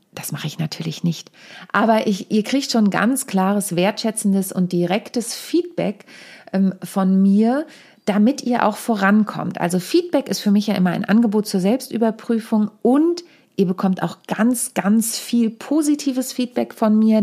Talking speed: 150 wpm